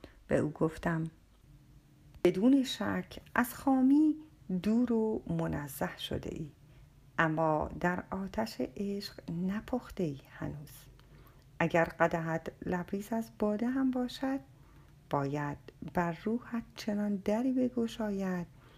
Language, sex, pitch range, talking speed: Persian, female, 145-215 Hz, 100 wpm